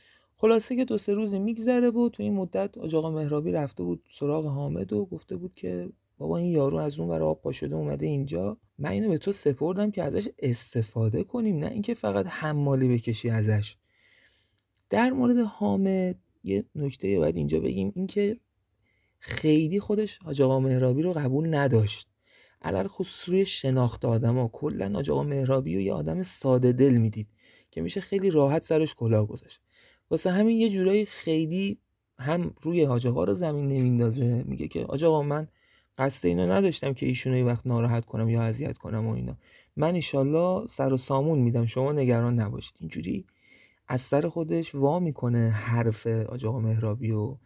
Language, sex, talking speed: Persian, male, 165 wpm